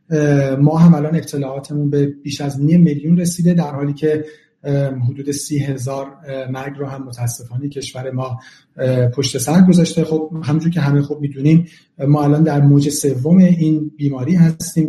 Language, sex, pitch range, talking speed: Persian, male, 140-165 Hz, 155 wpm